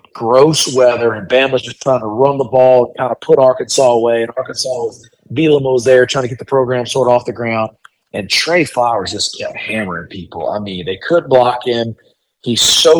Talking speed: 210 wpm